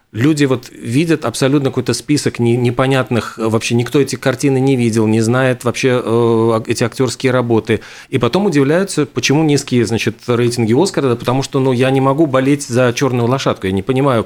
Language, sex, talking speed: Russian, male, 170 wpm